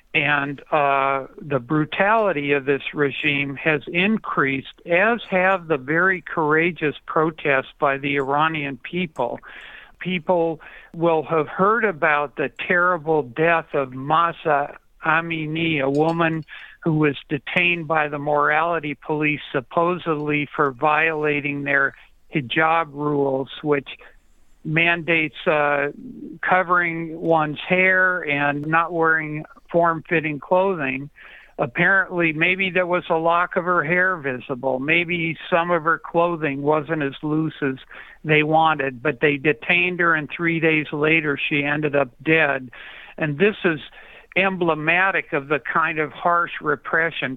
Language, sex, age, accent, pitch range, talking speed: English, male, 60-79, American, 145-170 Hz, 125 wpm